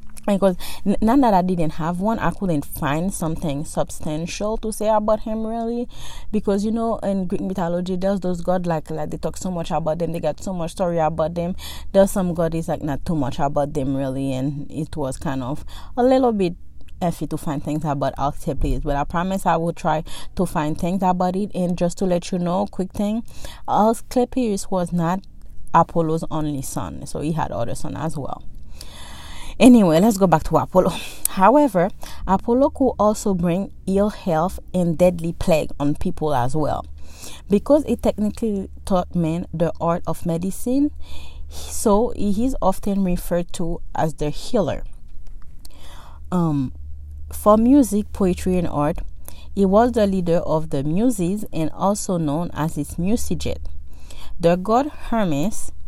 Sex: female